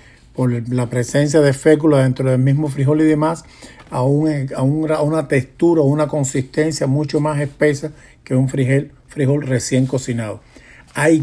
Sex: male